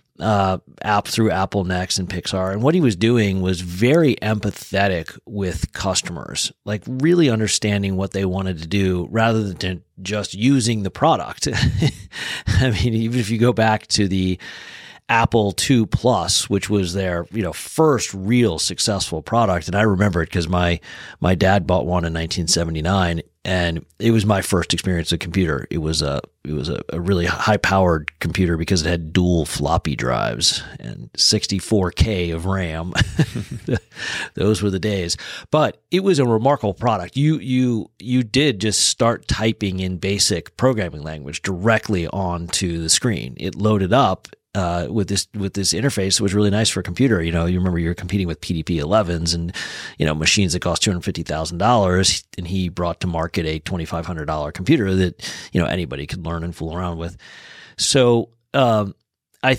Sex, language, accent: male, English, American